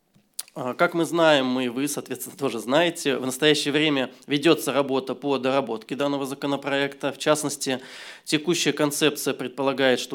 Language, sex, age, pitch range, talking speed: Russian, male, 20-39, 130-155 Hz, 135 wpm